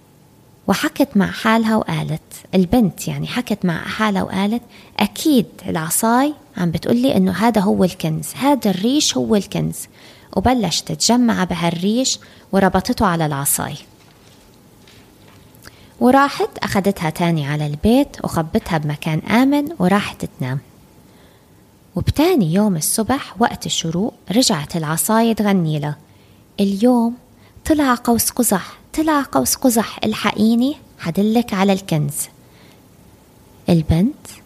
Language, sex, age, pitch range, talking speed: Arabic, female, 20-39, 175-235 Hz, 105 wpm